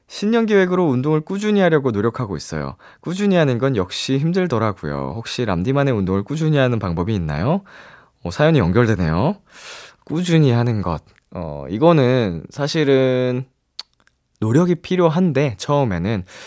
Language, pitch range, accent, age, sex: Korean, 100-155 Hz, native, 20-39, male